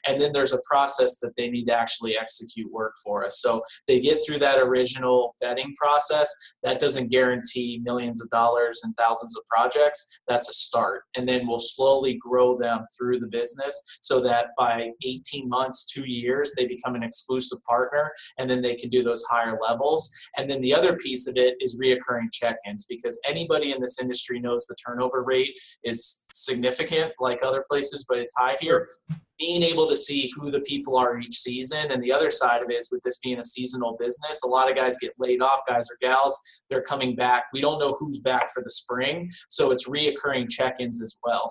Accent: American